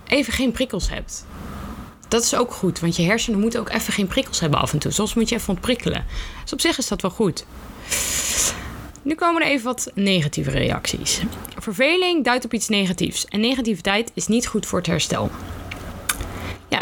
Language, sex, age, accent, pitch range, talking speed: Dutch, female, 20-39, Dutch, 180-240 Hz, 190 wpm